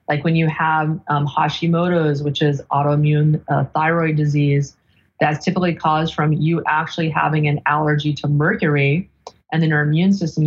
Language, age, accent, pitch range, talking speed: English, 30-49, American, 145-160 Hz, 160 wpm